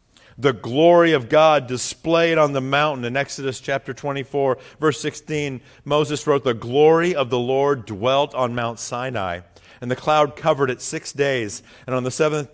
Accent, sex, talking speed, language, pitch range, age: American, male, 170 wpm, English, 120-155 Hz, 50-69